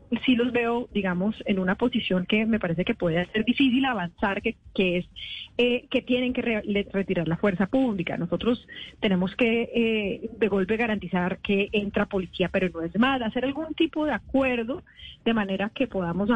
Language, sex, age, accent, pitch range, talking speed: Spanish, female, 30-49, Colombian, 190-235 Hz, 185 wpm